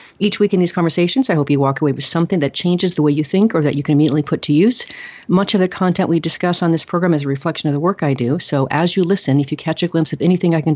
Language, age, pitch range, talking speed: English, 40-59, 150-175 Hz, 310 wpm